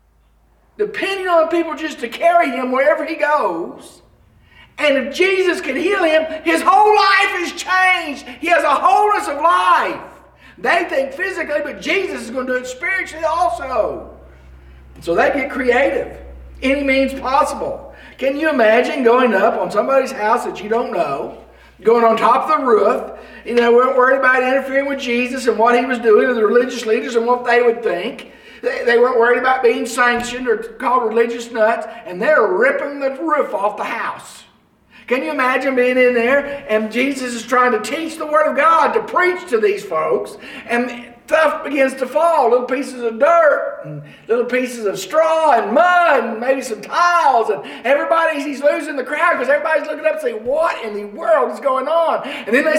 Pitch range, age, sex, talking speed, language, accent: 240-330 Hz, 50-69, male, 190 wpm, English, American